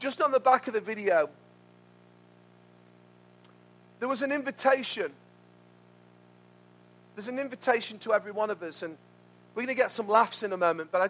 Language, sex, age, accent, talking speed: English, male, 40-59, British, 170 wpm